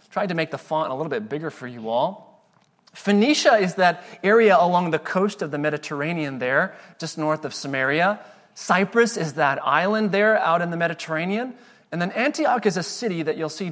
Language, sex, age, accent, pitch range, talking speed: English, male, 30-49, American, 155-210 Hz, 195 wpm